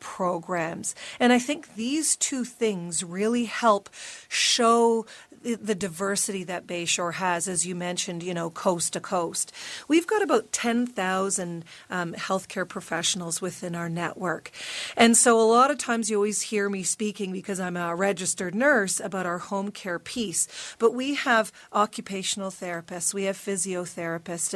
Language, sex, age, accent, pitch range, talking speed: English, female, 40-59, American, 180-225 Hz, 150 wpm